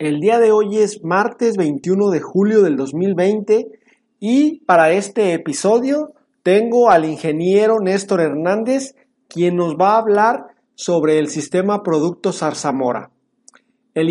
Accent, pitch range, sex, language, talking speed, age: Mexican, 165-230 Hz, male, Spanish, 130 wpm, 40-59